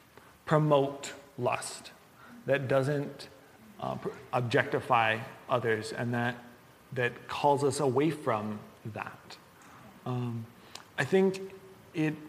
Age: 30-49